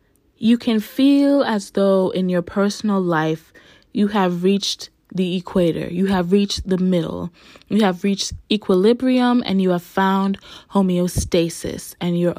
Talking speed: 145 wpm